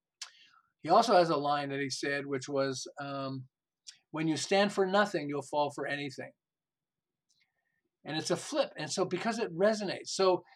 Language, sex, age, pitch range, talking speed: English, male, 50-69, 145-190 Hz, 170 wpm